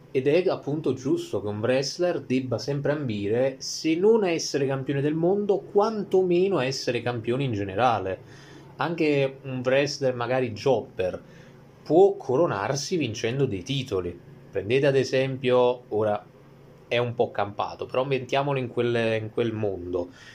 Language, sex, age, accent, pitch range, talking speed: Italian, male, 20-39, native, 110-140 Hz, 135 wpm